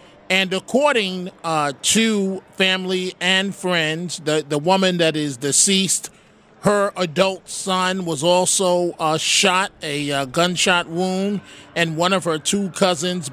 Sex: male